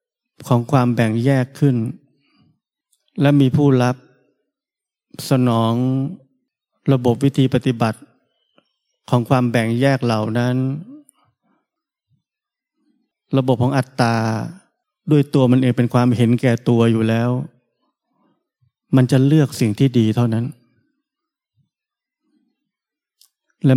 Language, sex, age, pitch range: Thai, male, 20-39, 120-150 Hz